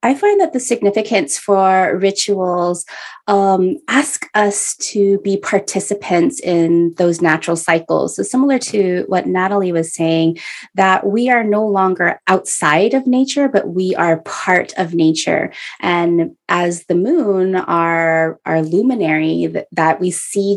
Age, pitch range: 20-39, 165-200 Hz